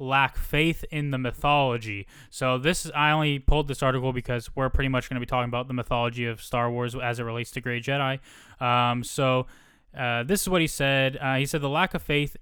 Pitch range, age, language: 125-150 Hz, 20-39, English